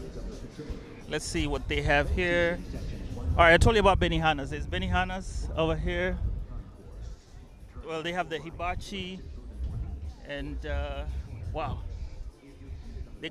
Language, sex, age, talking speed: Swahili, male, 30-49, 115 wpm